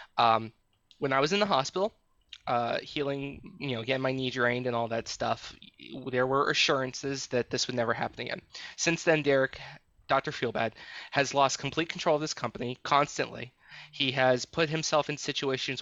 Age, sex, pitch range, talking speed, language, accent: 20-39, male, 125-155 Hz, 180 wpm, English, American